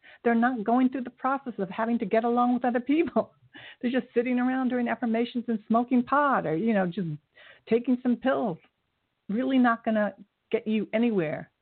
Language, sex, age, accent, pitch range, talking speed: English, female, 50-69, American, 190-240 Hz, 190 wpm